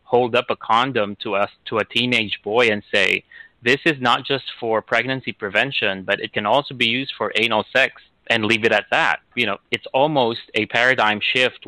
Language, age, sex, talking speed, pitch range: English, 30-49, male, 205 wpm, 105-125 Hz